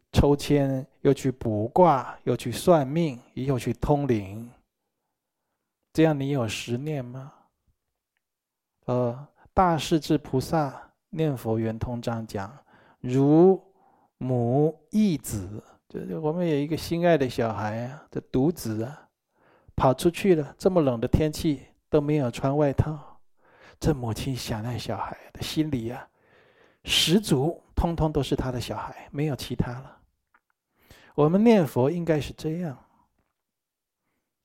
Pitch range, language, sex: 115-150 Hz, Chinese, male